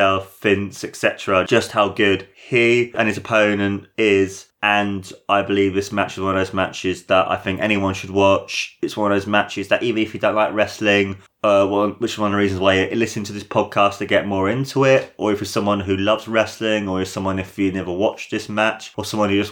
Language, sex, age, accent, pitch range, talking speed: English, male, 20-39, British, 100-135 Hz, 235 wpm